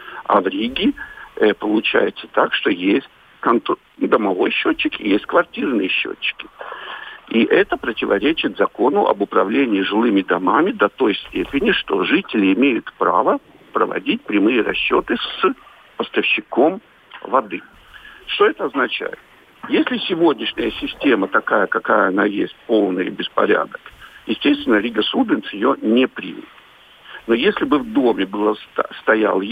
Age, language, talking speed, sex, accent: 70-89, Russian, 120 wpm, male, native